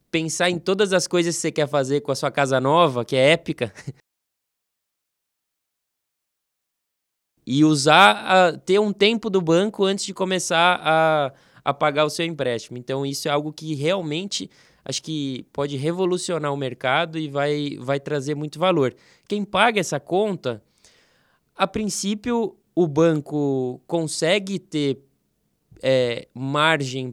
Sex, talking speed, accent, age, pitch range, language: male, 140 wpm, Brazilian, 20-39, 140-170 Hz, Portuguese